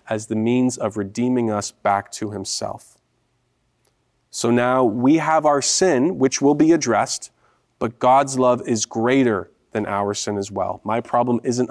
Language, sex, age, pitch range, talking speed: English, male, 30-49, 105-140 Hz, 165 wpm